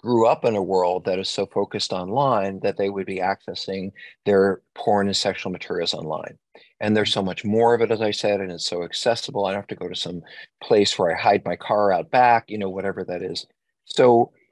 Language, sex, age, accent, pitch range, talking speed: English, male, 40-59, American, 95-115 Hz, 230 wpm